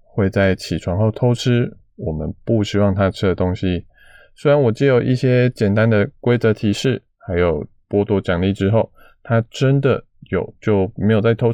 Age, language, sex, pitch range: 20-39, Chinese, male, 95-115 Hz